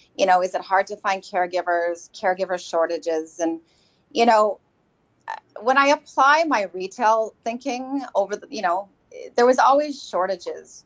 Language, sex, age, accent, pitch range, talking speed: English, female, 30-49, American, 175-240 Hz, 150 wpm